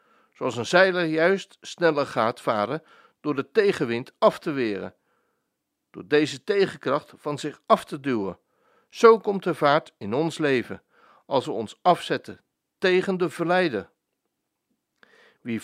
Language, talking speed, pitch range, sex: Dutch, 140 wpm, 140-185 Hz, male